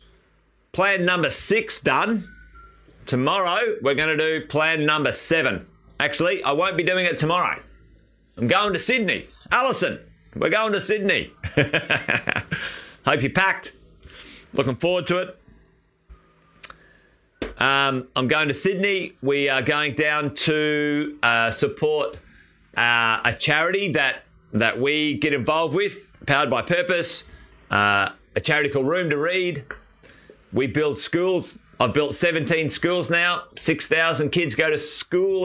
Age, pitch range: 30-49, 130-165 Hz